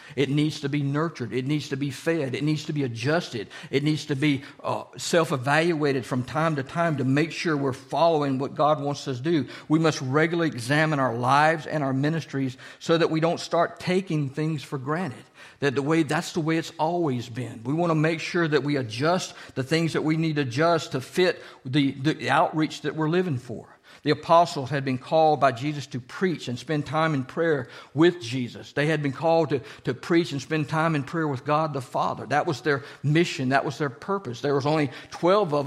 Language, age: English, 50-69